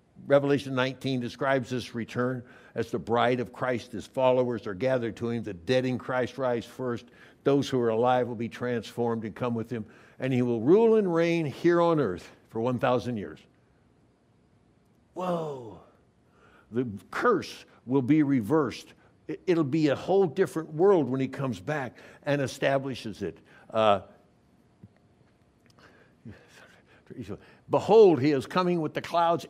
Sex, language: male, English